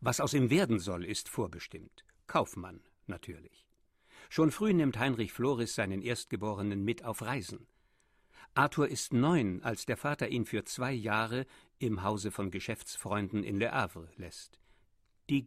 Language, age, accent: German, 60-79, German